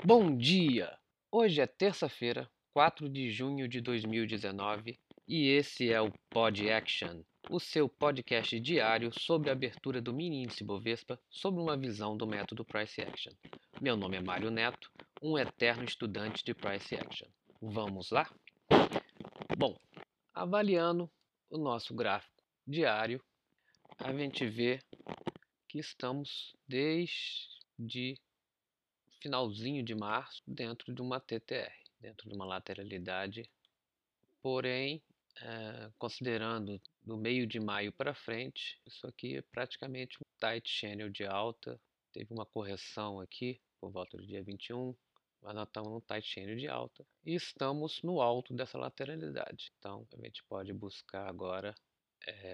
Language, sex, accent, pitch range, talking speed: Portuguese, male, Brazilian, 105-135 Hz, 130 wpm